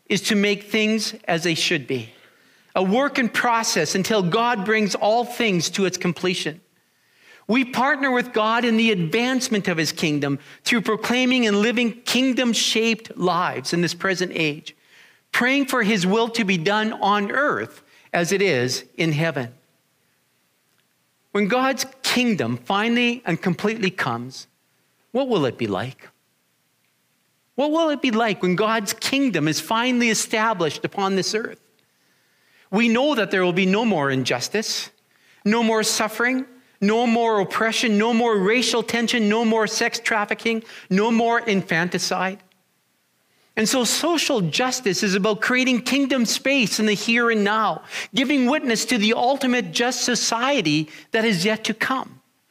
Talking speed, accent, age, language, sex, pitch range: 150 wpm, American, 40-59, English, male, 190-240 Hz